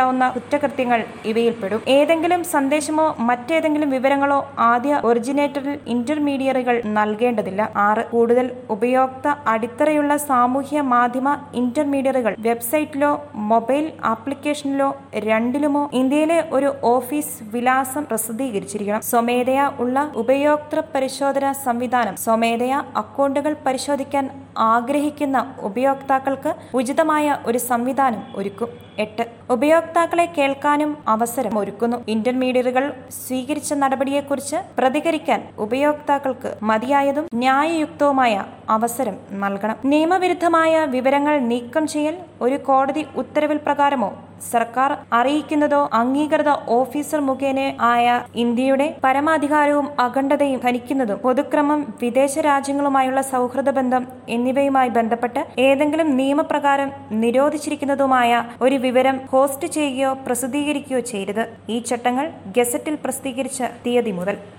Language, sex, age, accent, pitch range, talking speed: Malayalam, female, 20-39, native, 240-290 Hz, 85 wpm